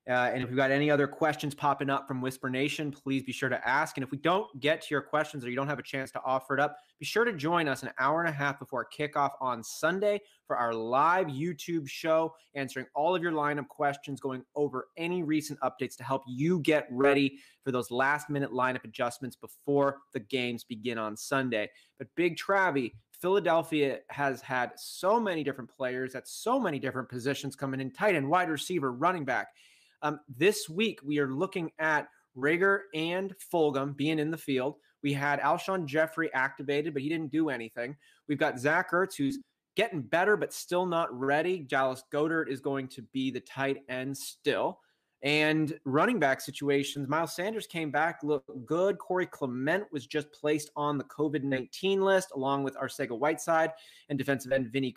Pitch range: 135-160 Hz